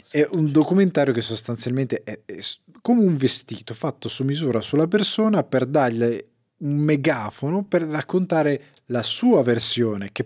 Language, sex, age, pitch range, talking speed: Italian, male, 20-39, 110-150 Hz, 145 wpm